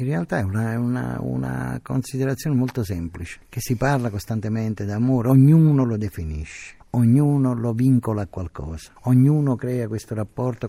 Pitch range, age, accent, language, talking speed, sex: 90-115 Hz, 50-69, native, Italian, 145 wpm, male